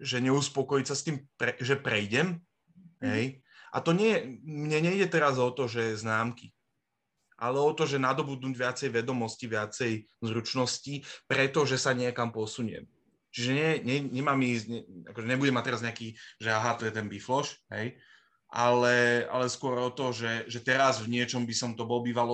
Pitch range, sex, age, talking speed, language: 120-140 Hz, male, 20-39, 175 wpm, Slovak